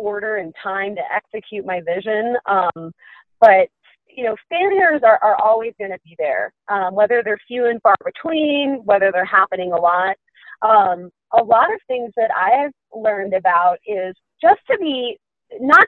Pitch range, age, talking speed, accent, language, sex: 190-250 Hz, 30-49, 170 wpm, American, English, female